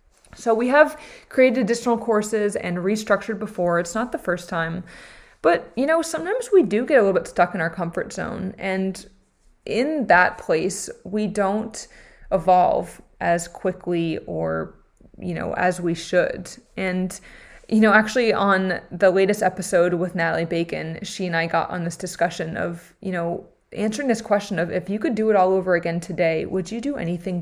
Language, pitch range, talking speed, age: English, 180-225 Hz, 180 wpm, 20-39